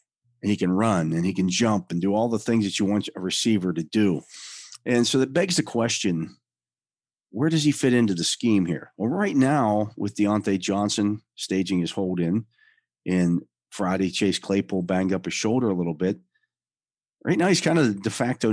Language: English